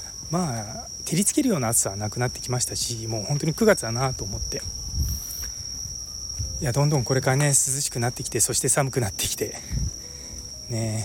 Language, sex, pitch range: Japanese, male, 105-145 Hz